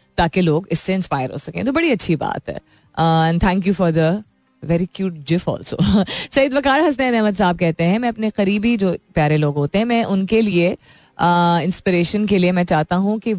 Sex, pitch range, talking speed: female, 170-230 Hz, 195 wpm